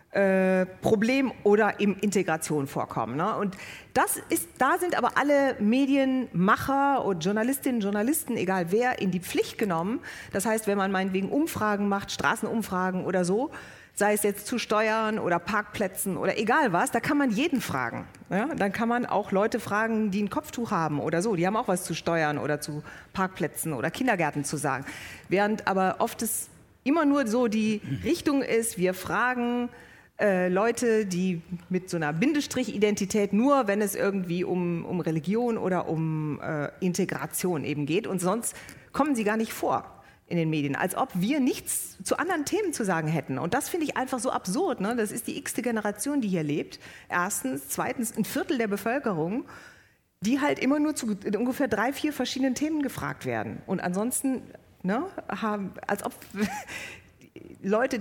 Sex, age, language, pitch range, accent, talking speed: female, 40-59, German, 185-250 Hz, German, 170 wpm